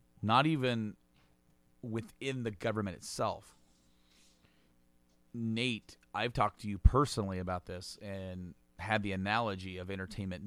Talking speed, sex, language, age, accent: 115 wpm, male, English, 30-49, American